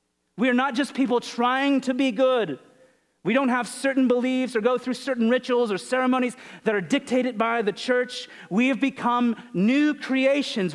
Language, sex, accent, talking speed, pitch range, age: English, male, American, 180 wpm, 150-245 Hz, 40-59